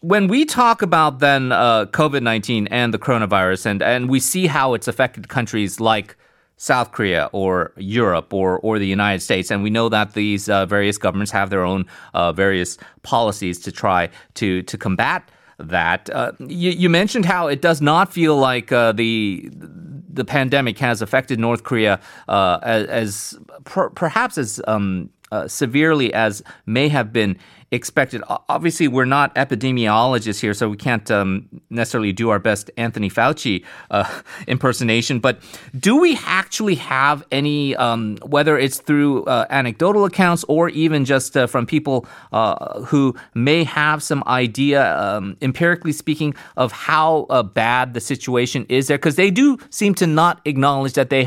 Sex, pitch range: male, 110-145 Hz